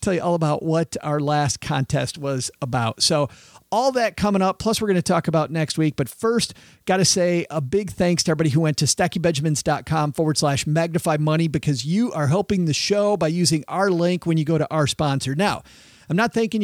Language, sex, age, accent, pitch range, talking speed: English, male, 50-69, American, 145-185 Hz, 220 wpm